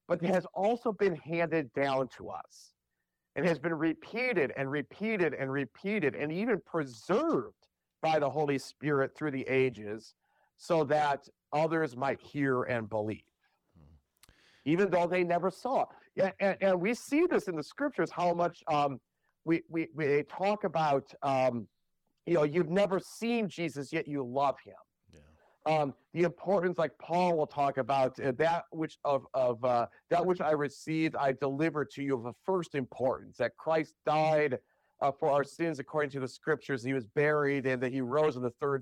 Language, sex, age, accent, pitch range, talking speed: English, male, 40-59, American, 135-170 Hz, 175 wpm